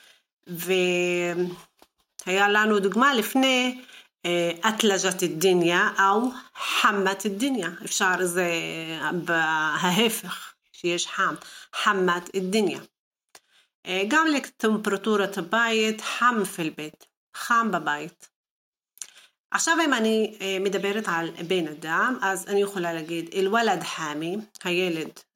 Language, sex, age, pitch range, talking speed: Hebrew, female, 40-59, 175-225 Hz, 90 wpm